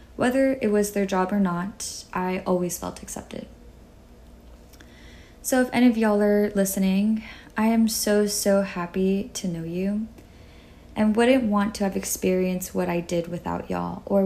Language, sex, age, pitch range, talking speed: English, female, 20-39, 175-205 Hz, 160 wpm